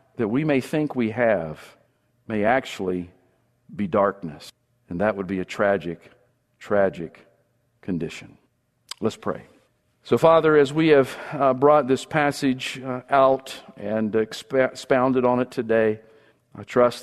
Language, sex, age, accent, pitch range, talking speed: English, male, 50-69, American, 110-130 Hz, 125 wpm